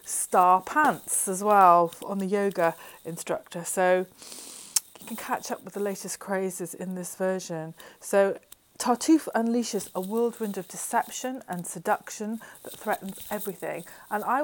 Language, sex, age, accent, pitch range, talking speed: English, female, 30-49, British, 180-220 Hz, 140 wpm